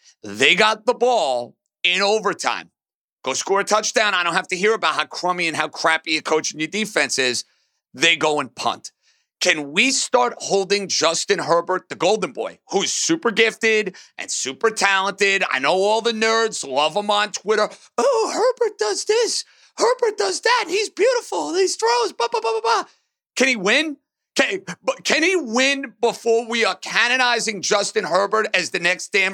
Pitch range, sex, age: 180-250 Hz, male, 40-59